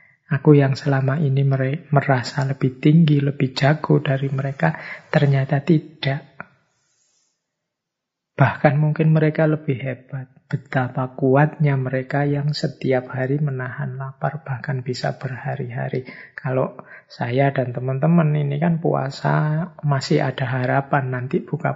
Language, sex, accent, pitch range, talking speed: Indonesian, male, native, 135-155 Hz, 115 wpm